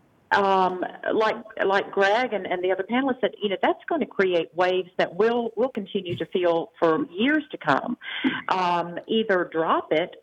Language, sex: English, female